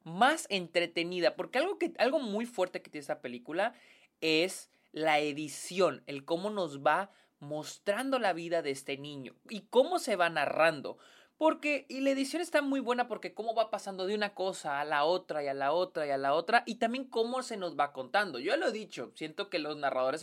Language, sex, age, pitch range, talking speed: Spanish, male, 20-39, 150-230 Hz, 200 wpm